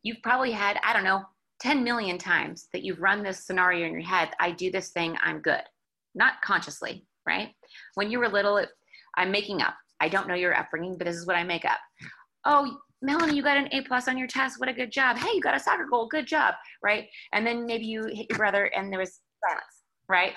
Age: 30-49